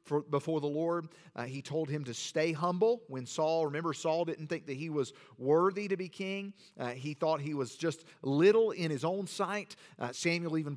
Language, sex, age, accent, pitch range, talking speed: English, male, 40-59, American, 140-180 Hz, 205 wpm